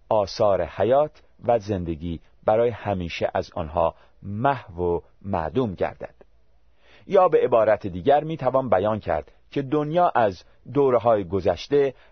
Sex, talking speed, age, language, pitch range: male, 125 wpm, 40-59, Persian, 95-130 Hz